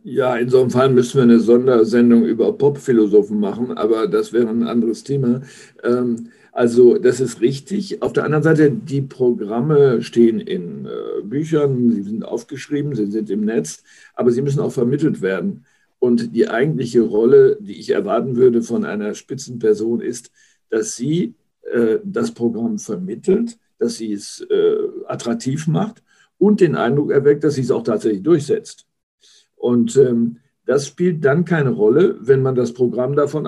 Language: German